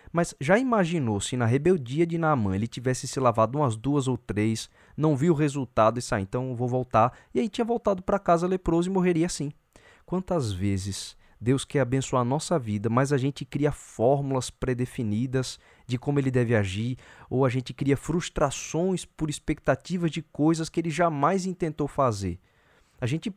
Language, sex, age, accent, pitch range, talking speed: Portuguese, male, 20-39, Brazilian, 115-155 Hz, 180 wpm